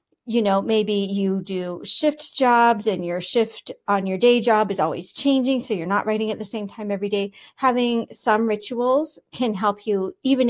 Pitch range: 205-245 Hz